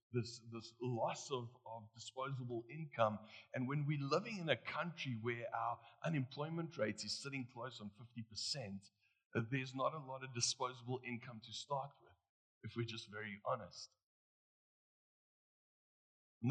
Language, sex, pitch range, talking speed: English, male, 110-135 Hz, 140 wpm